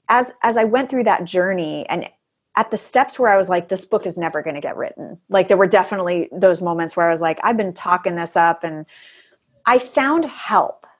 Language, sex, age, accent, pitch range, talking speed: English, female, 30-49, American, 170-220 Hz, 230 wpm